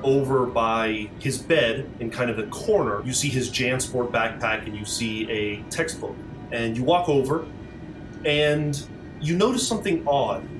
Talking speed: 160 wpm